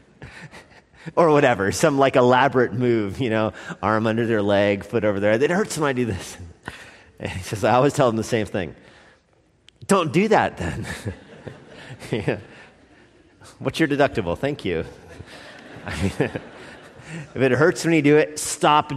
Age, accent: 40-59, American